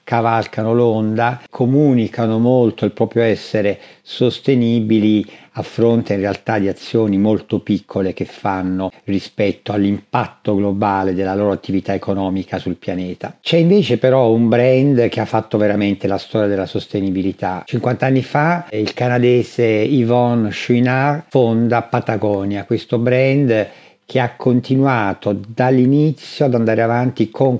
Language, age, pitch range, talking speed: Italian, 50-69, 105-125 Hz, 130 wpm